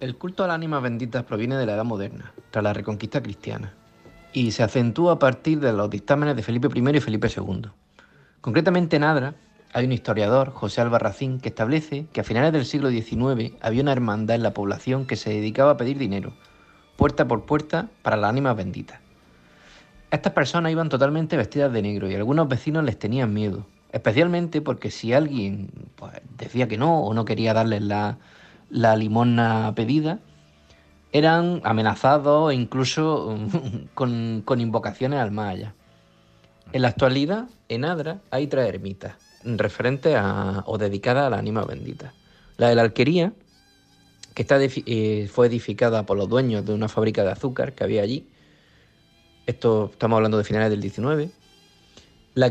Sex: male